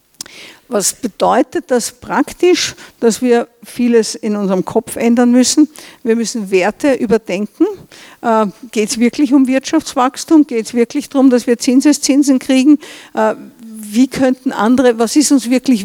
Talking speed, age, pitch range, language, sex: 145 wpm, 50-69, 220-265 Hz, German, female